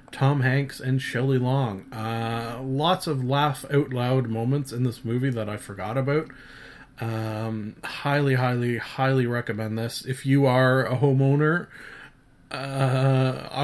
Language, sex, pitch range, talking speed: English, male, 115-140 Hz, 130 wpm